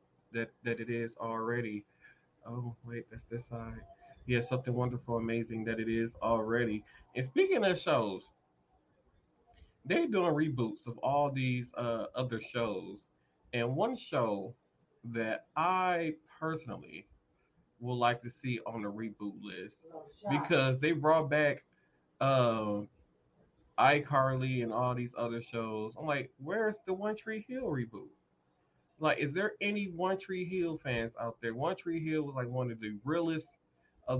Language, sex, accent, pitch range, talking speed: English, male, American, 115-155 Hz, 145 wpm